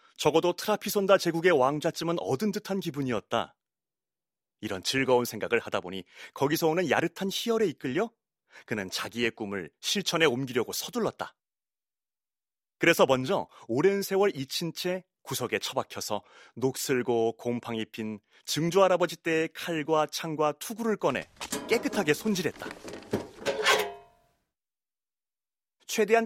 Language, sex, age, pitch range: Korean, male, 30-49, 125-205 Hz